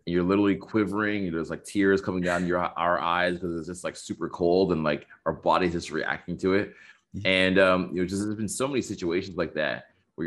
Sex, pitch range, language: male, 80-95 Hz, English